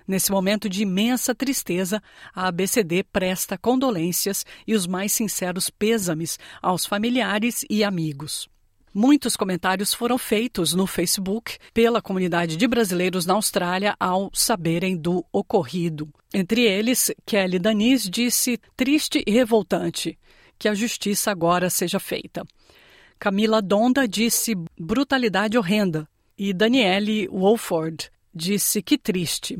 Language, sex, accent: Portuguese, female, Brazilian